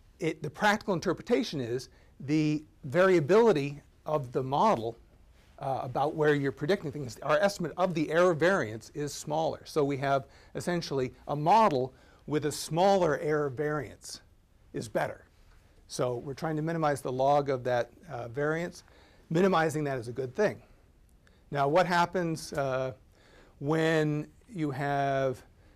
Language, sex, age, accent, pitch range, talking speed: English, male, 50-69, American, 120-155 Hz, 140 wpm